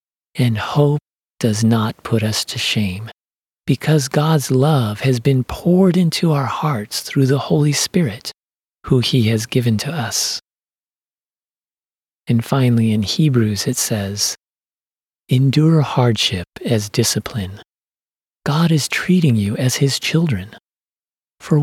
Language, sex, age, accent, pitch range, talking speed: English, male, 40-59, American, 115-150 Hz, 125 wpm